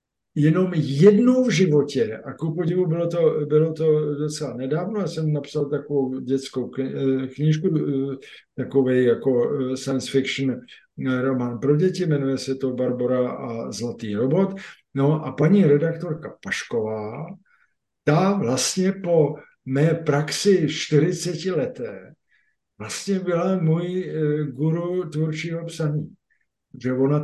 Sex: male